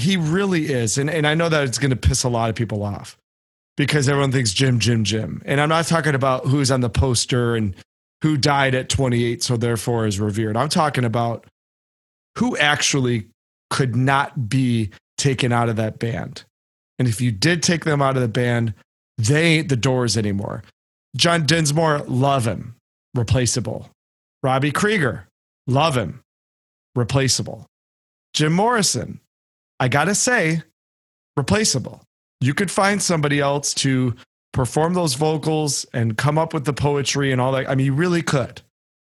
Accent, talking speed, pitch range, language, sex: American, 165 wpm, 115-150 Hz, English, male